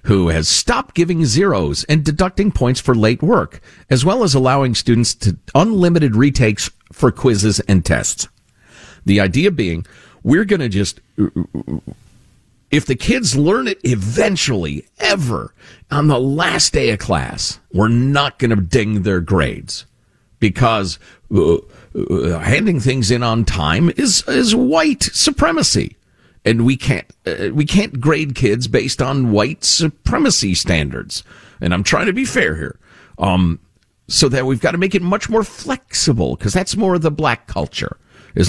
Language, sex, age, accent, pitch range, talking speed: English, male, 50-69, American, 100-150 Hz, 155 wpm